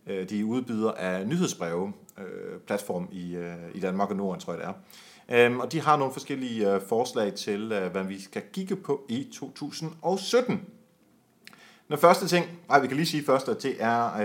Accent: native